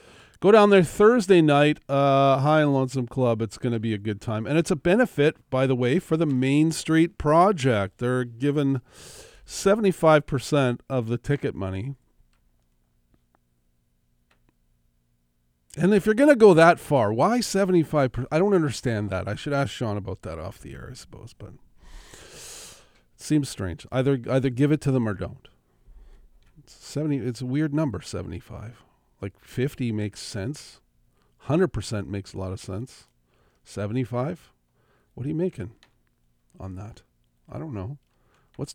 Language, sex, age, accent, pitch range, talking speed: English, male, 40-59, American, 100-150 Hz, 160 wpm